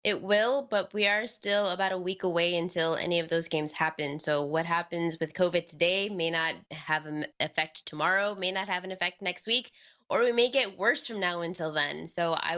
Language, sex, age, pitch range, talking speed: English, female, 20-39, 160-195 Hz, 220 wpm